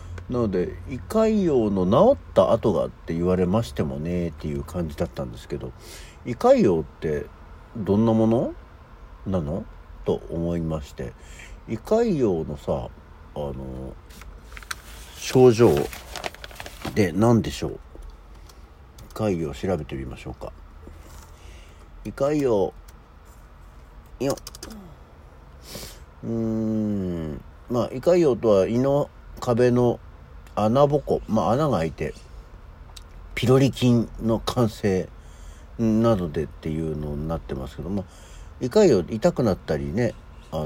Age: 60-79